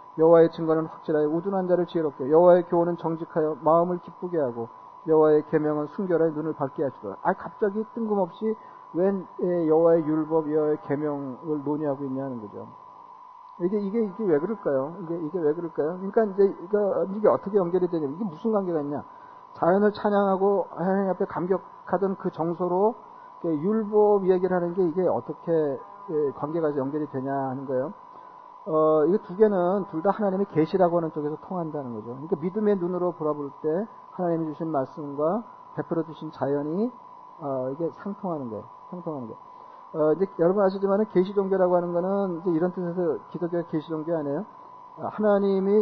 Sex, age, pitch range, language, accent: male, 40-59, 155-200 Hz, Korean, native